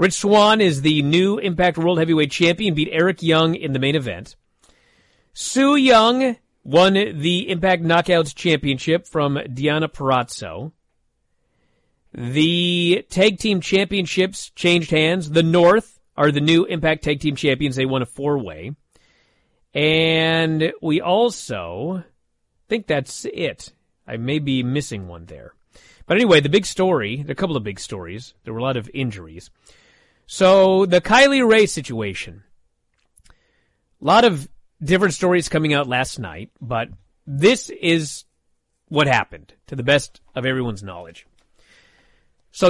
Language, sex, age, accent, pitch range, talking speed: English, male, 40-59, American, 130-180 Hz, 140 wpm